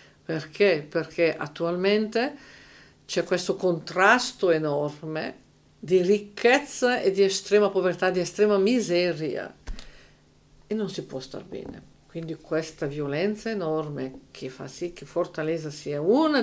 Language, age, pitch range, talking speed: Italian, 50-69, 160-195 Hz, 120 wpm